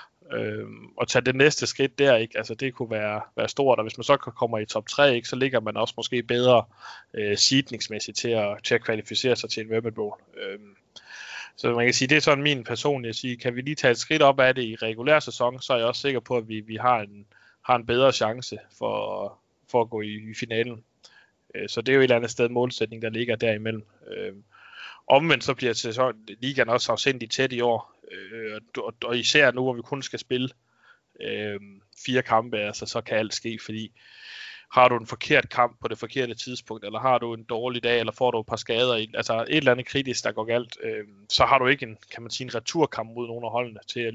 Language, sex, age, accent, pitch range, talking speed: Danish, male, 20-39, native, 110-130 Hz, 230 wpm